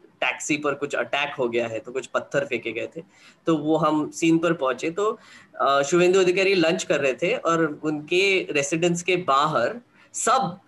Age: 20-39